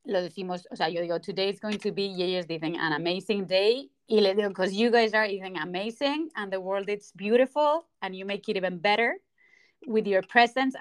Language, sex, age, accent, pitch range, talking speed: English, female, 30-49, Spanish, 195-240 Hz, 230 wpm